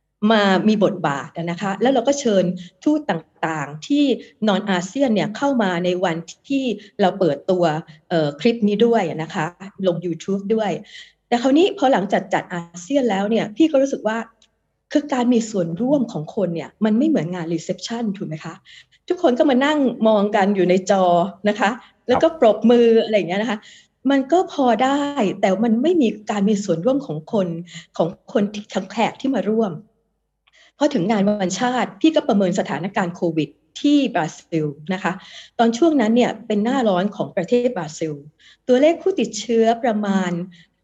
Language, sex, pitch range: Thai, female, 180-240 Hz